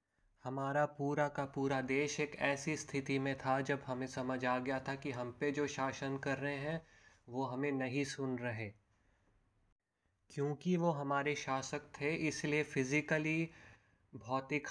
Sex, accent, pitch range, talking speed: male, native, 125-150 Hz, 150 wpm